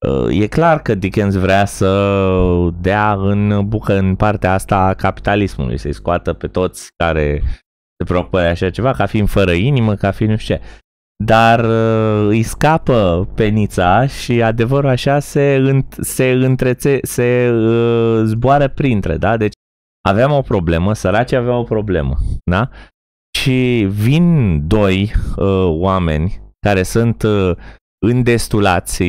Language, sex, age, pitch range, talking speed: Romanian, male, 20-39, 90-125 Hz, 135 wpm